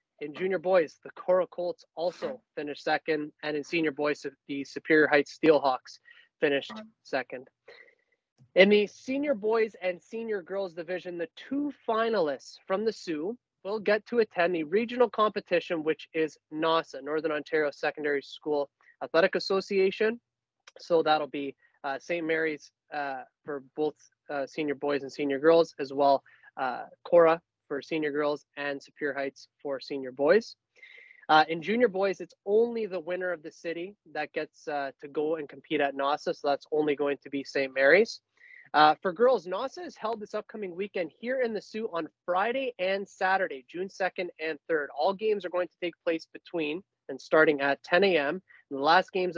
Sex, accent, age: male, American, 20-39